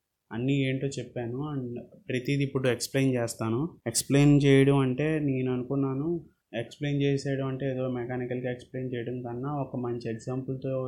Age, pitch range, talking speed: 20-39, 125-140 Hz, 130 wpm